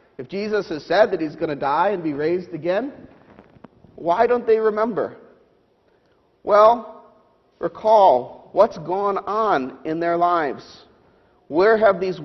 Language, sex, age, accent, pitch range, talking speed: English, male, 50-69, American, 170-230 Hz, 135 wpm